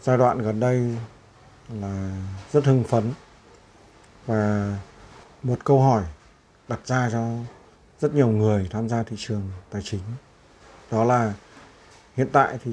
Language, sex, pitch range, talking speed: Vietnamese, male, 105-130 Hz, 135 wpm